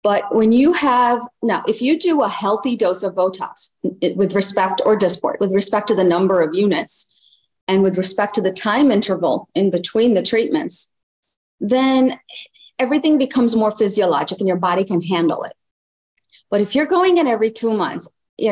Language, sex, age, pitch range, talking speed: English, female, 40-59, 185-235 Hz, 180 wpm